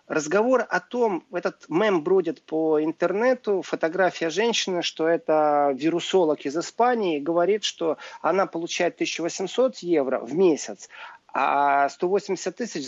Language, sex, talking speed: Russian, male, 120 wpm